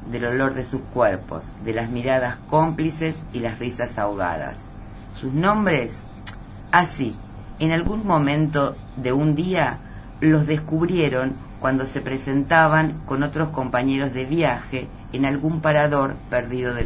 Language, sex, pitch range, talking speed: Spanish, female, 110-150 Hz, 135 wpm